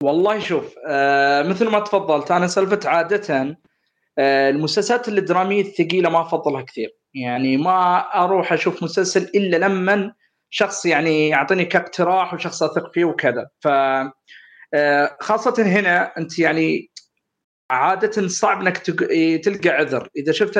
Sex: male